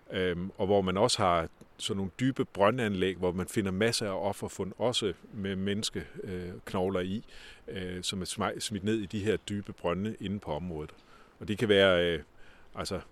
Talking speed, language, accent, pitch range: 165 wpm, Danish, native, 90-105 Hz